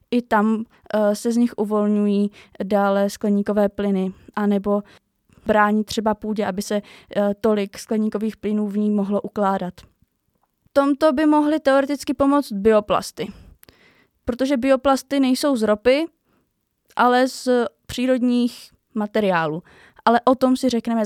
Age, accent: 20-39, native